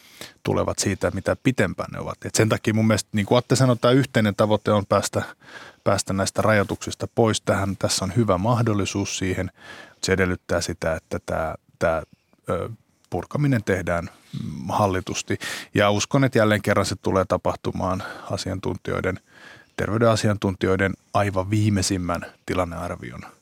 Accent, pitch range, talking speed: native, 95-110 Hz, 135 wpm